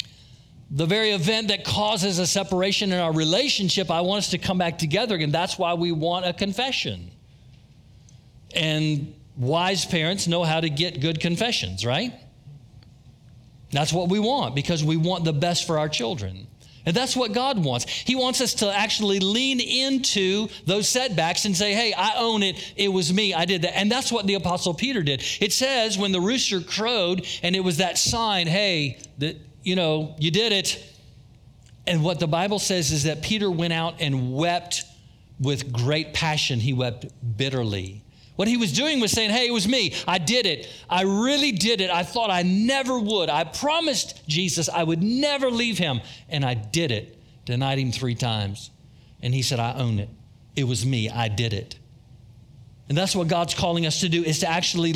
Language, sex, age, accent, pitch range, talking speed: English, male, 40-59, American, 130-200 Hz, 190 wpm